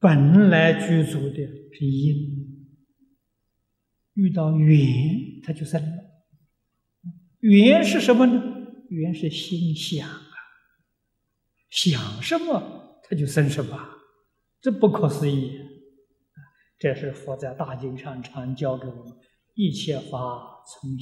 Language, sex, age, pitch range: Chinese, male, 60-79, 120-160 Hz